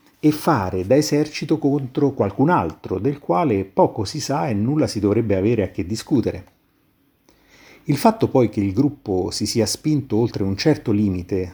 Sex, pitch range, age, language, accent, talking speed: male, 100-130 Hz, 50-69, Italian, native, 170 wpm